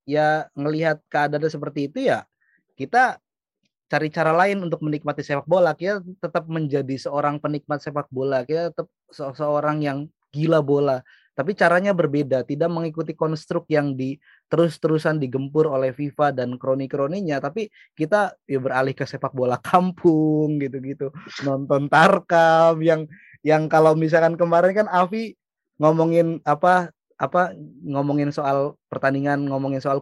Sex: male